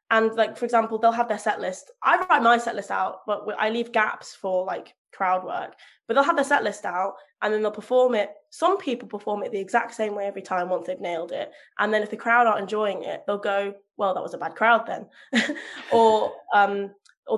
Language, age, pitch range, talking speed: English, 10-29, 200-240 Hz, 240 wpm